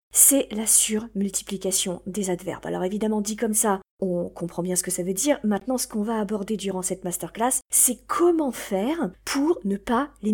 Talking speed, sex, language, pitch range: 190 wpm, female, French, 195-265 Hz